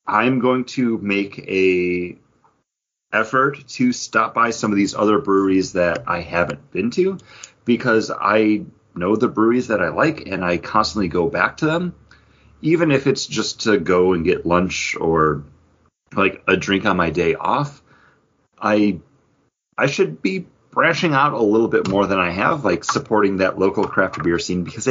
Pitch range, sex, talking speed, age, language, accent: 95-130 Hz, male, 175 wpm, 30-49, English, American